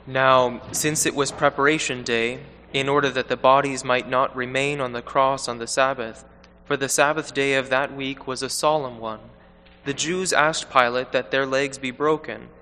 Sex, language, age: male, English, 20-39